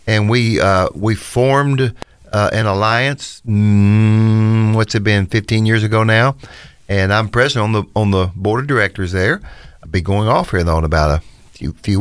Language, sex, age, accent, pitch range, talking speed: English, male, 50-69, American, 100-125 Hz, 190 wpm